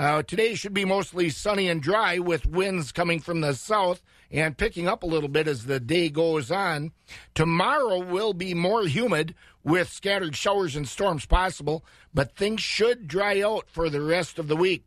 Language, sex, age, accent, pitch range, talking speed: English, male, 50-69, American, 155-190 Hz, 190 wpm